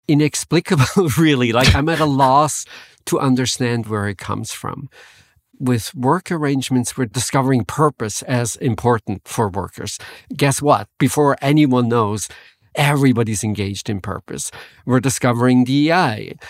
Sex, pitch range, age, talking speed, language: male, 120-150 Hz, 50-69, 125 wpm, English